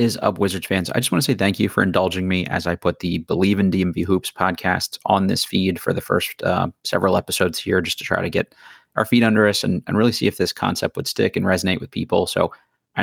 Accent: American